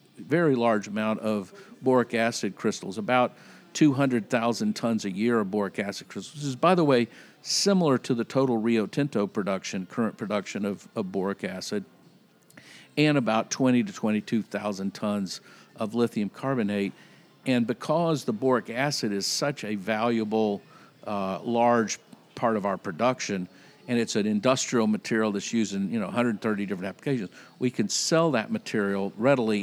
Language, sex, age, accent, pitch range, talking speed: English, male, 50-69, American, 105-140 Hz, 155 wpm